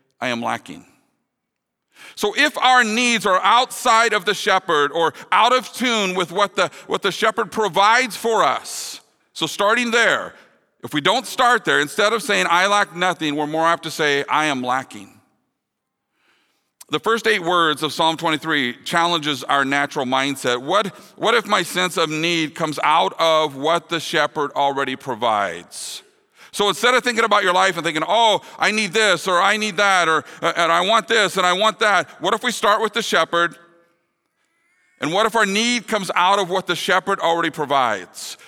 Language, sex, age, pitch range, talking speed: English, male, 40-59, 160-220 Hz, 185 wpm